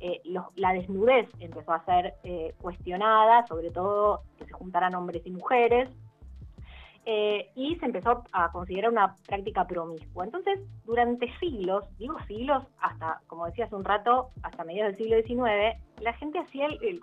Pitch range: 180-250 Hz